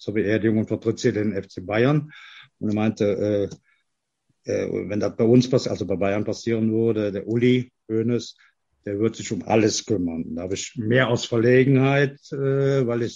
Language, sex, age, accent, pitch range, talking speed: German, male, 50-69, German, 110-130 Hz, 185 wpm